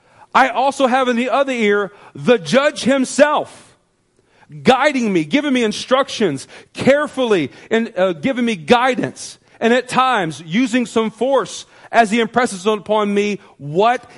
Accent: American